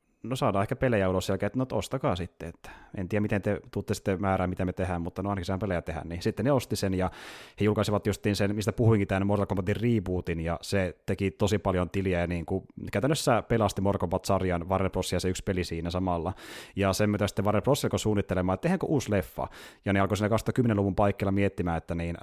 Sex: male